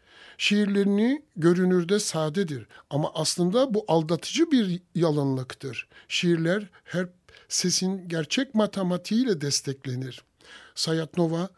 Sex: male